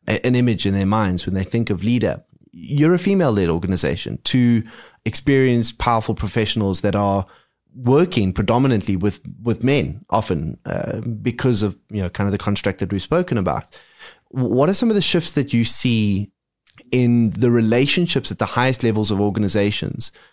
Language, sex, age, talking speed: English, male, 20-39, 170 wpm